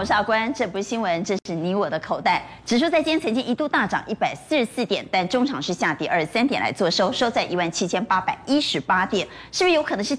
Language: Chinese